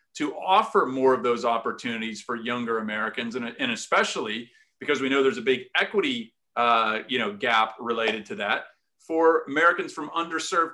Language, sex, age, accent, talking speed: English, male, 40-59, American, 155 wpm